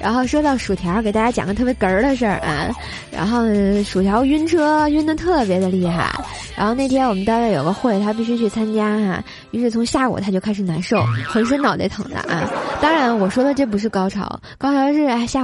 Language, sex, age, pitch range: Chinese, female, 20-39, 200-260 Hz